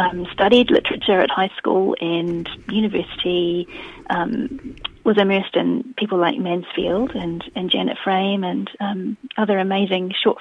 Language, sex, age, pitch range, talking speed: English, female, 30-49, 180-235 Hz, 140 wpm